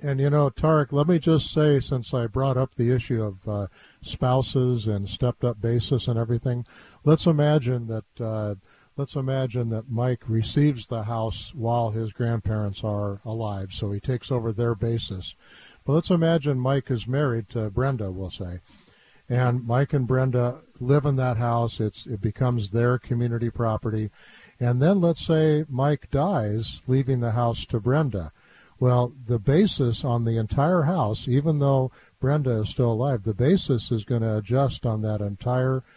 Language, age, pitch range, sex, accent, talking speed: English, 50-69, 110-135 Hz, male, American, 170 wpm